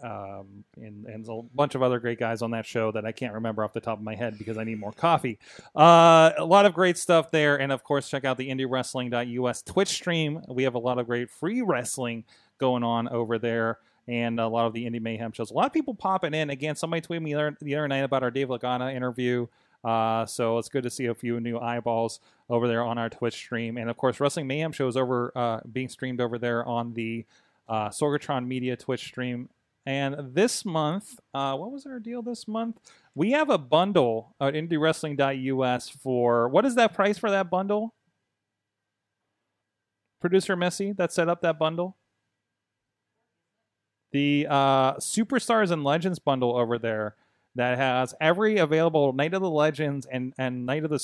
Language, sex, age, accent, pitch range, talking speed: English, male, 30-49, American, 115-160 Hz, 200 wpm